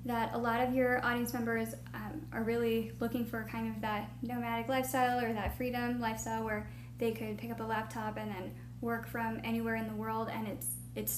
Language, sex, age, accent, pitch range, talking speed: English, female, 10-29, American, 110-120 Hz, 210 wpm